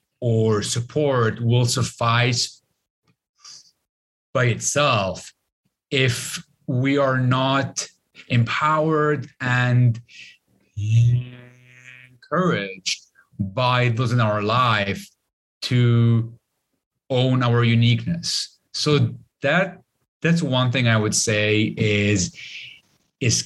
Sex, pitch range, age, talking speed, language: male, 110-140 Hz, 30-49, 80 wpm, English